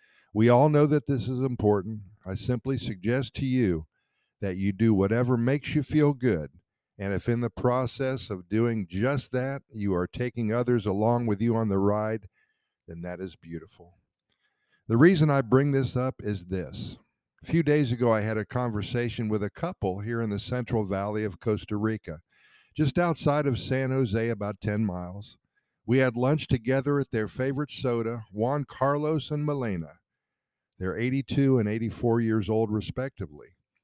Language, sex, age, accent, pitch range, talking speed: English, male, 50-69, American, 105-135 Hz, 170 wpm